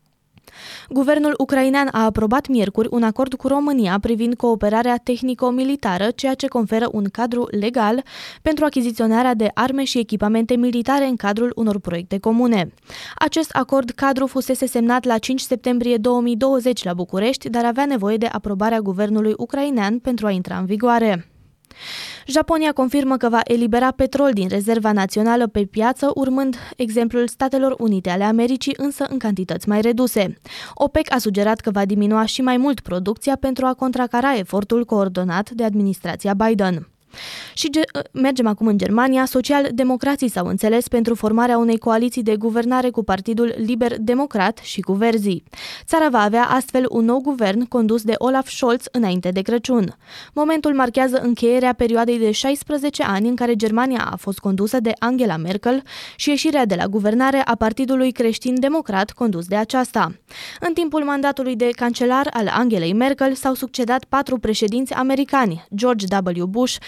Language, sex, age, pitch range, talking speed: Romanian, female, 20-39, 215-265 Hz, 155 wpm